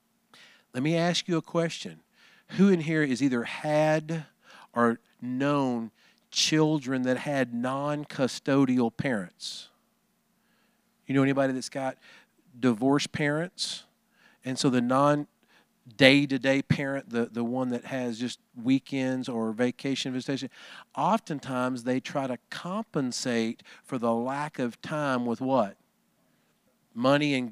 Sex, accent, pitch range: male, American, 130-165 Hz